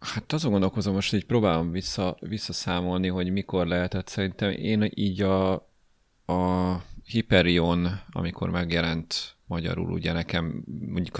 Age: 30-49